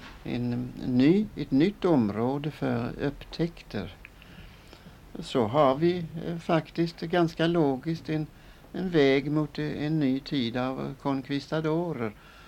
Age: 60-79